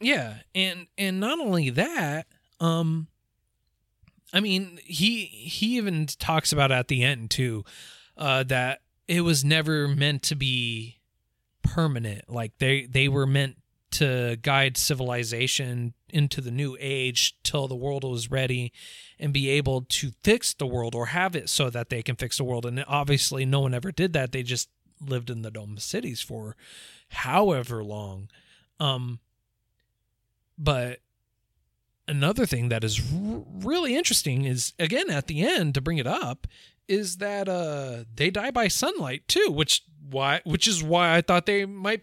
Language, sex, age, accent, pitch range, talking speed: English, male, 30-49, American, 125-180 Hz, 160 wpm